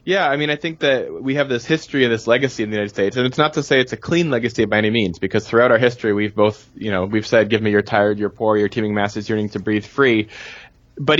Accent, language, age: American, English, 20-39